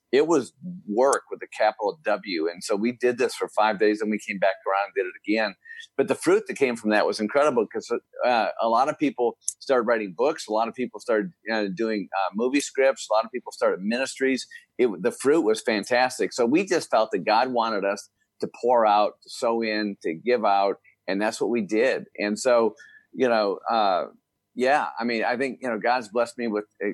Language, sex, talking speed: English, male, 220 wpm